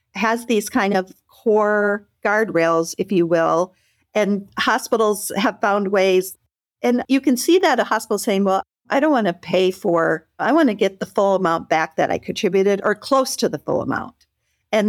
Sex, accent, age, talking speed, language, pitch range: female, American, 50-69, 190 wpm, English, 175-215 Hz